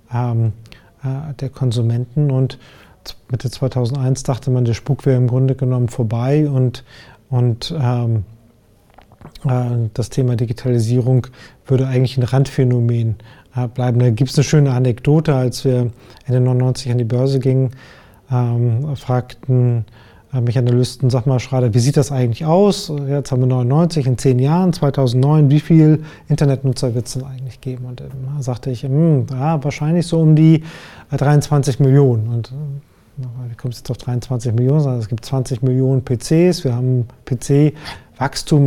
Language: German